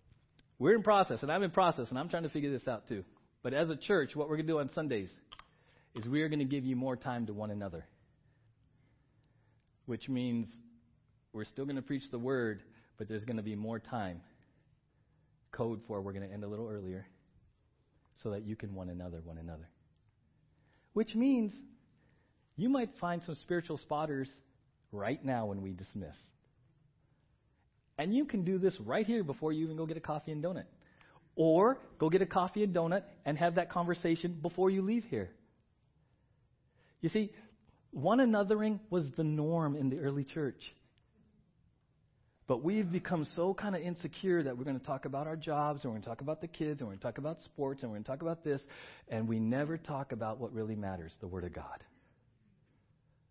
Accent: American